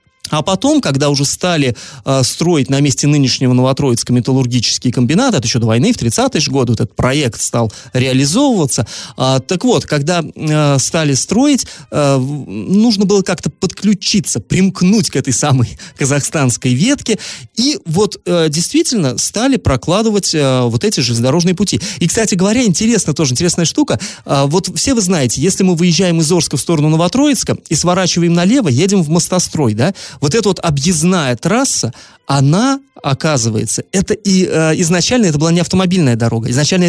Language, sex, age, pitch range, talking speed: Russian, male, 30-49, 130-190 Hz, 160 wpm